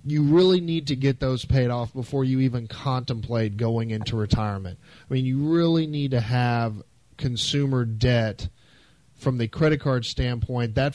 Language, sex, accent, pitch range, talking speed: English, male, American, 120-150 Hz, 165 wpm